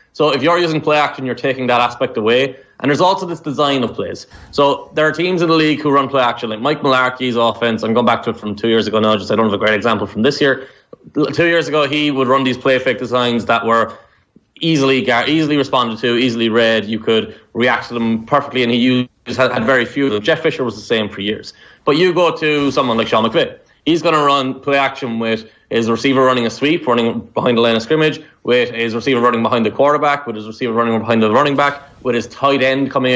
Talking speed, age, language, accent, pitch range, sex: 250 wpm, 20-39, English, Irish, 115-145 Hz, male